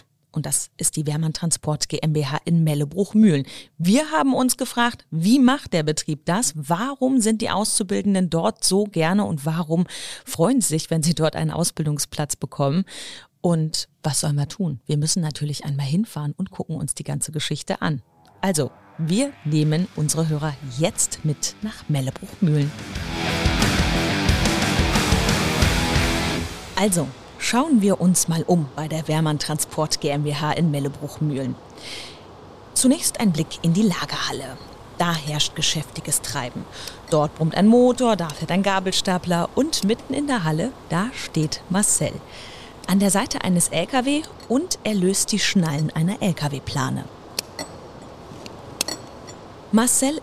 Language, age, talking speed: German, 30-49, 135 wpm